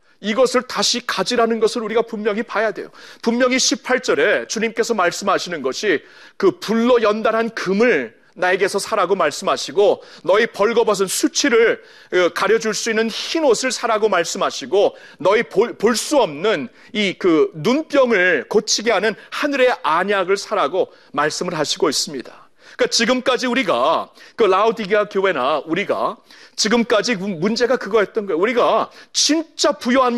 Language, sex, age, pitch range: Korean, male, 40-59, 215-280 Hz